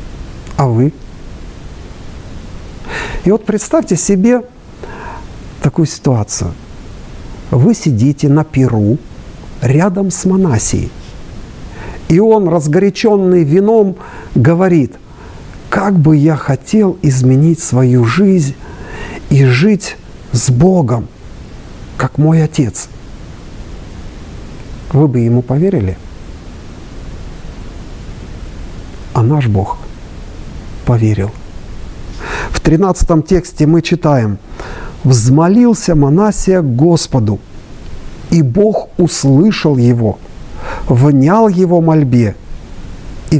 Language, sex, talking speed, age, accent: Russian, male, 80 wpm, 50-69, native